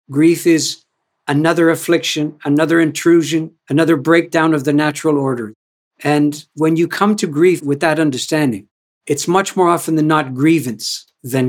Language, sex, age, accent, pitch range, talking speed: English, male, 60-79, American, 145-165 Hz, 150 wpm